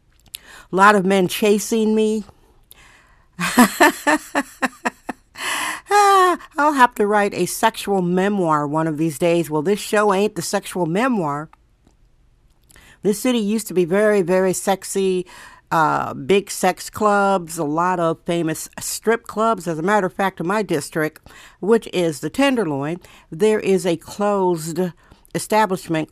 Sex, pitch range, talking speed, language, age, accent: female, 170-205 Hz, 135 wpm, English, 60-79, American